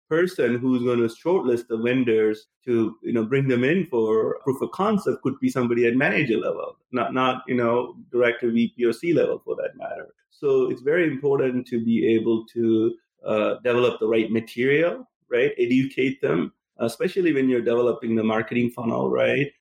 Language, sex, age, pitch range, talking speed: English, male, 30-49, 115-150 Hz, 180 wpm